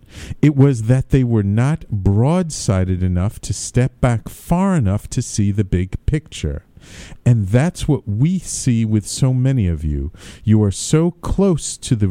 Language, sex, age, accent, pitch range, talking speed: English, male, 50-69, American, 105-140 Hz, 170 wpm